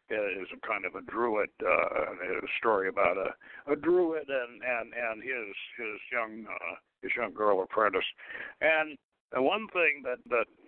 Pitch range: 135-205 Hz